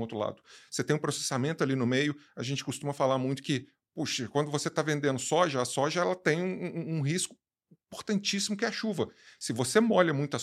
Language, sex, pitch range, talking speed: Portuguese, male, 135-180 Hz, 215 wpm